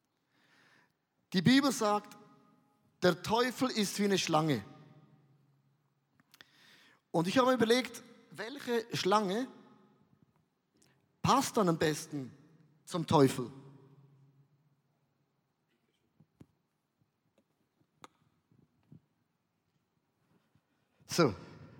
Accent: German